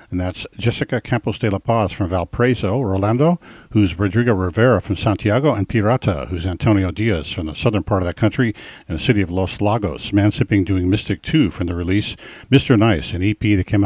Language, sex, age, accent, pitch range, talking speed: English, male, 50-69, American, 95-120 Hz, 205 wpm